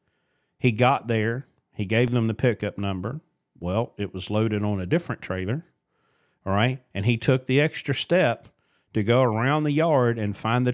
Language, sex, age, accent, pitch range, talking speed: English, male, 40-59, American, 115-155 Hz, 185 wpm